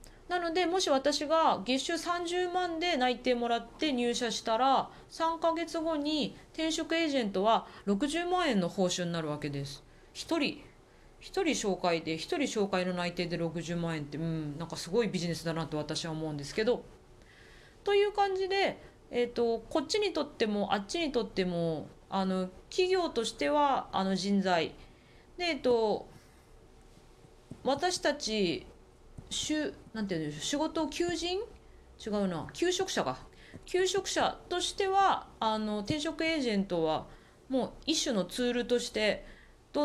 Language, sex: Japanese, female